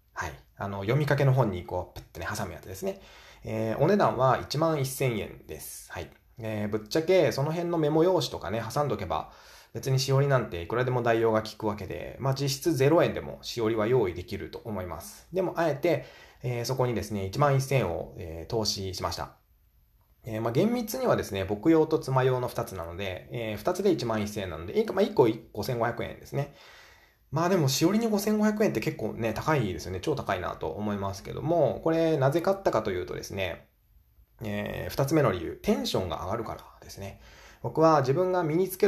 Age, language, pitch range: 20-39, Japanese, 100-140 Hz